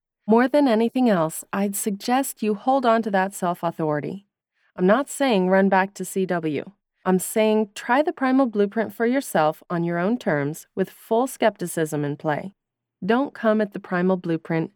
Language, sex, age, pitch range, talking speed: English, female, 30-49, 185-240 Hz, 170 wpm